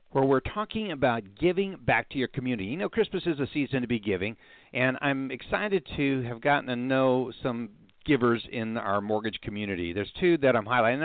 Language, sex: English, male